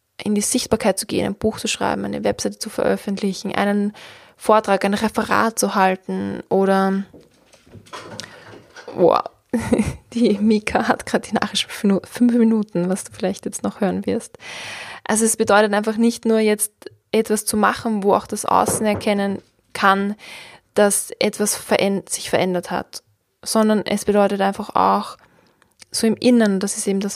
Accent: German